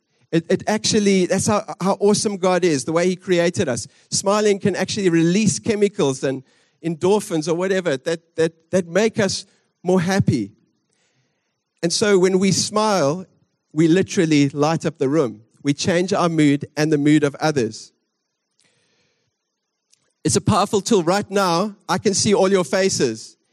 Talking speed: 155 wpm